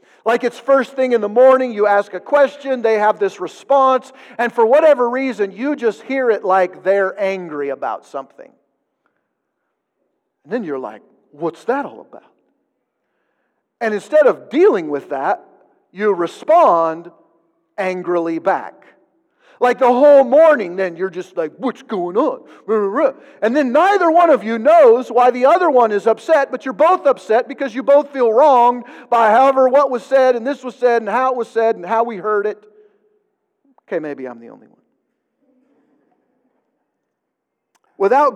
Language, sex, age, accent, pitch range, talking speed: English, male, 50-69, American, 210-285 Hz, 165 wpm